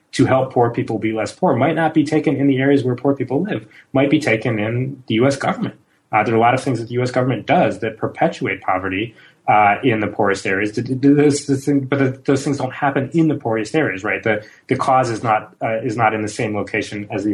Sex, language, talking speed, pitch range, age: male, English, 260 wpm, 95-125 Hz, 30-49